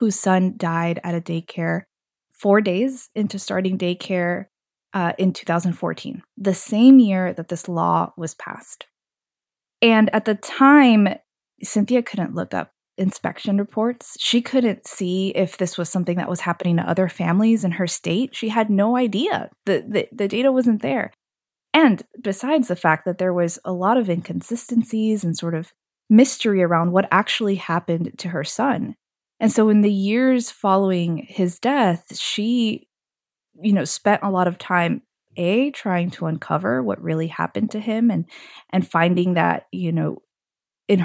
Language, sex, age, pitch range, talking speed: English, female, 20-39, 175-225 Hz, 165 wpm